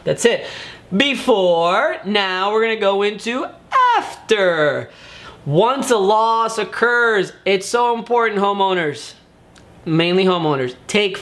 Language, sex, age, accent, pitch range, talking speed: English, male, 20-39, American, 165-225 Hz, 105 wpm